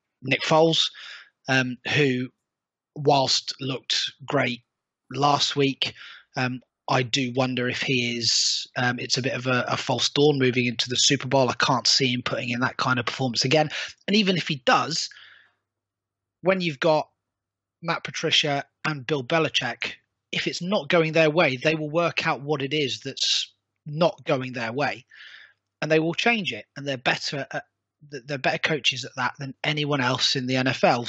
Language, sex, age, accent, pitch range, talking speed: English, male, 20-39, British, 125-145 Hz, 180 wpm